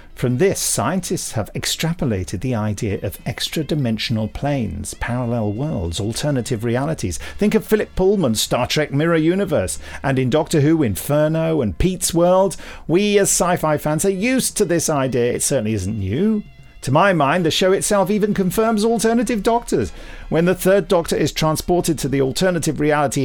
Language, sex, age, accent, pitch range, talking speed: English, male, 50-69, British, 115-190 Hz, 165 wpm